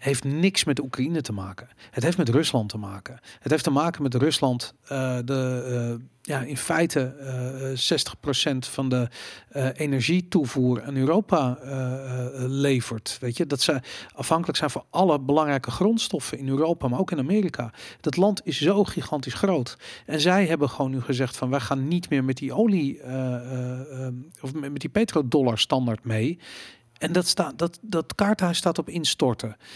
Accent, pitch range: Dutch, 125-165 Hz